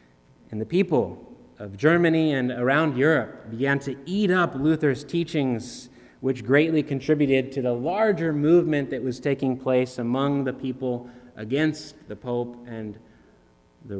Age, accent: 30-49, American